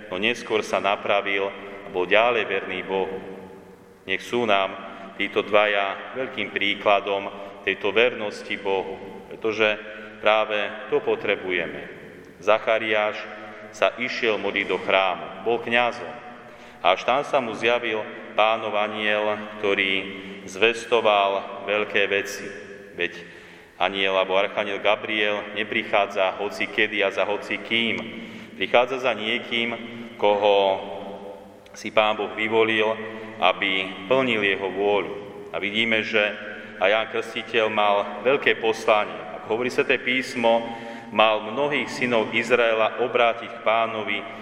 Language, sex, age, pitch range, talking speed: Slovak, male, 30-49, 100-115 Hz, 120 wpm